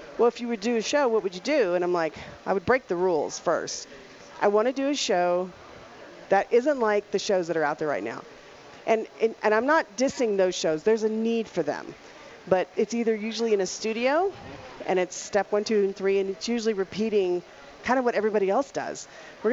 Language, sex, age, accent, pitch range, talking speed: English, female, 40-59, American, 185-230 Hz, 225 wpm